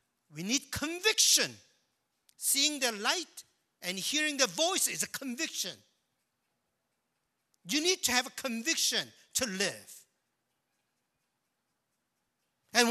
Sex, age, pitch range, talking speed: male, 50-69, 180-265 Hz, 100 wpm